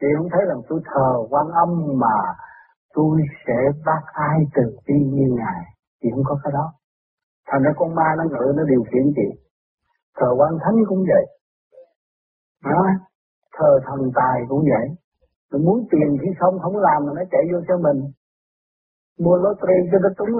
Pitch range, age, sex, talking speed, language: 140-190 Hz, 60-79, male, 180 wpm, Vietnamese